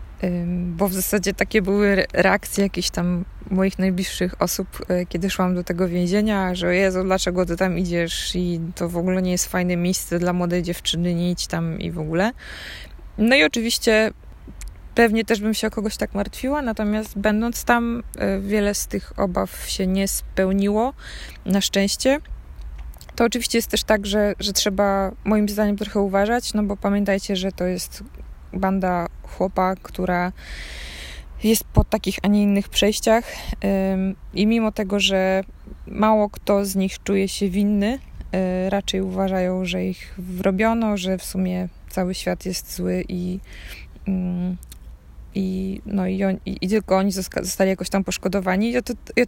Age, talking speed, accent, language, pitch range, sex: 20-39, 150 wpm, native, Polish, 185-210 Hz, female